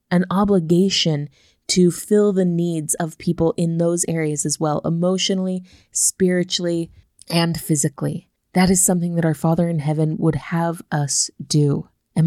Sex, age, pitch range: female, 20-39, 160-195 Hz